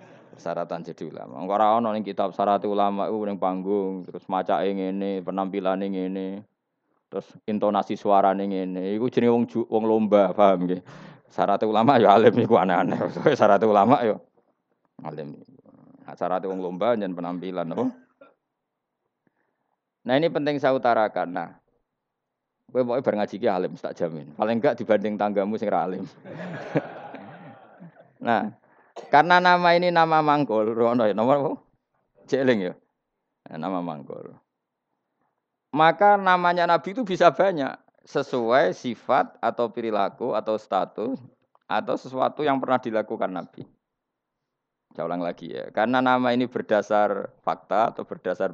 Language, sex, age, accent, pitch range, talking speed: Indonesian, male, 20-39, native, 95-125 Hz, 125 wpm